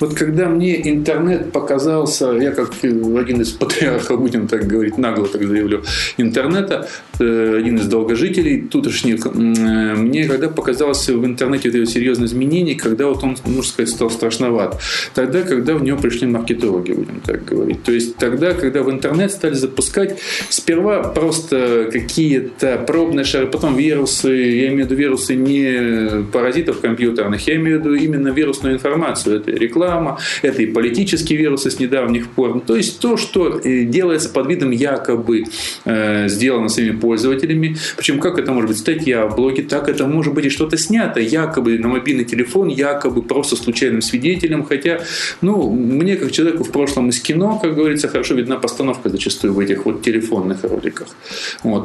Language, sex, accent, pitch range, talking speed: Russian, male, native, 115-155 Hz, 160 wpm